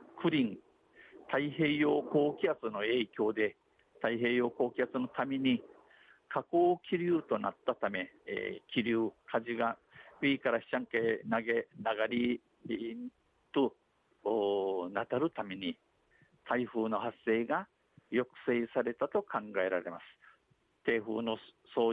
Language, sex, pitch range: Japanese, male, 115-135 Hz